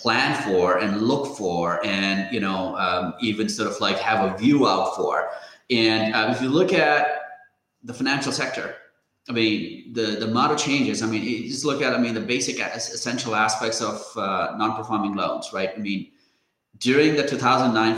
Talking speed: 185 wpm